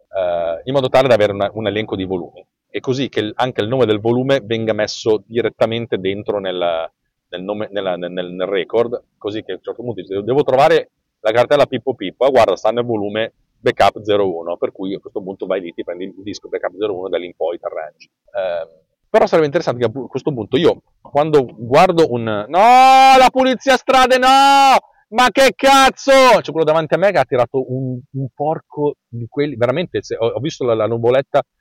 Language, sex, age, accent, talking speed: Italian, male, 40-59, native, 200 wpm